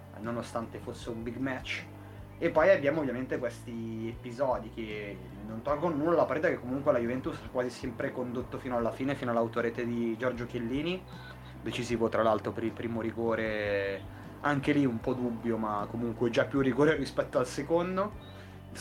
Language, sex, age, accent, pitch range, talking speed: Italian, male, 20-39, native, 110-130 Hz, 170 wpm